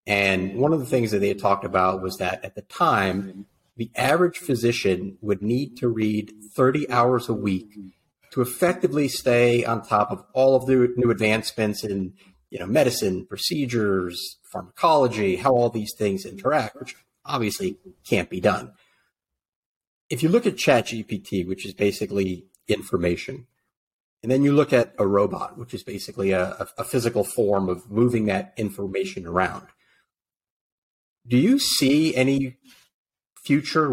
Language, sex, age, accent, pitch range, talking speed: English, male, 40-59, American, 100-130 Hz, 150 wpm